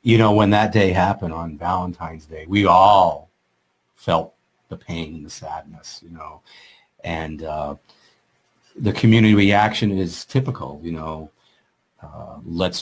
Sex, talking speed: male, 140 wpm